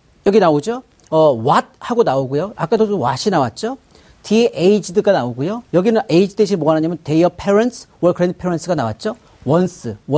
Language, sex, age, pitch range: Korean, male, 40-59, 145-230 Hz